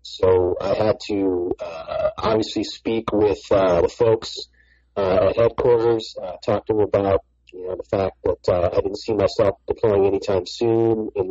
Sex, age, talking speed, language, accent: male, 40-59, 175 wpm, English, American